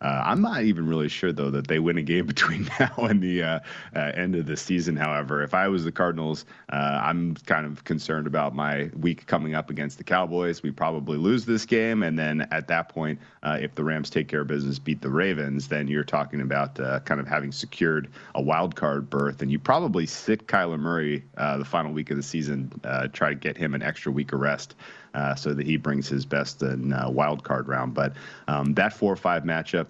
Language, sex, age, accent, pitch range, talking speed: English, male, 30-49, American, 70-80 Hz, 235 wpm